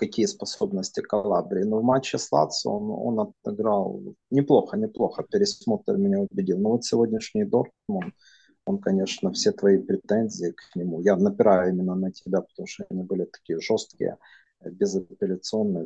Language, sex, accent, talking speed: Russian, male, native, 145 wpm